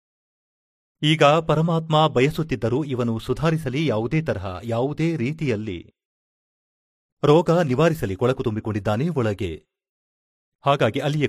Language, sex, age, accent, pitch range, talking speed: Kannada, male, 40-59, native, 110-150 Hz, 85 wpm